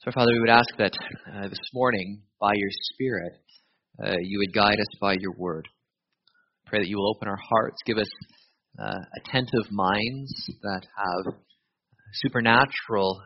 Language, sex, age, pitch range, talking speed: English, male, 20-39, 105-125 Hz, 160 wpm